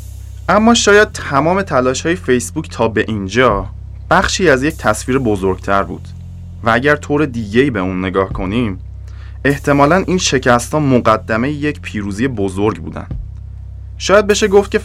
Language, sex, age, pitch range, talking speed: English, male, 20-39, 95-150 Hz, 145 wpm